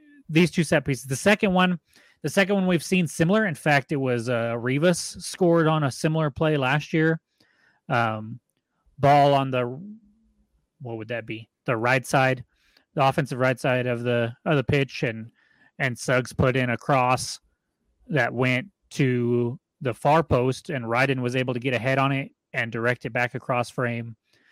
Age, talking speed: 30-49, 185 wpm